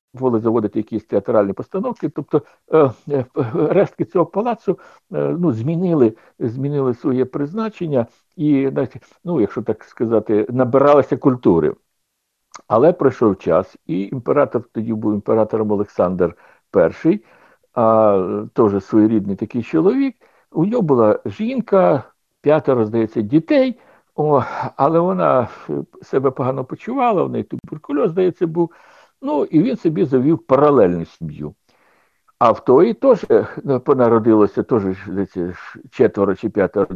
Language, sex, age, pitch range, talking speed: Ukrainian, male, 60-79, 110-170 Hz, 120 wpm